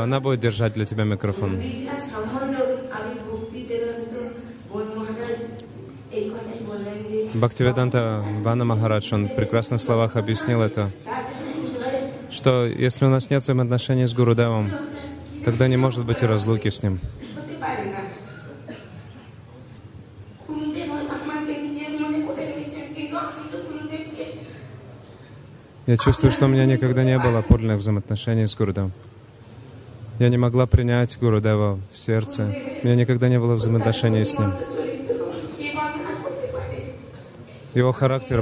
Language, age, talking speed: Russian, 20-39, 95 wpm